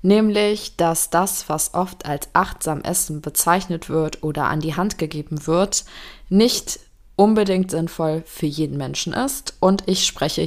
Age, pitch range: 20-39, 155-185 Hz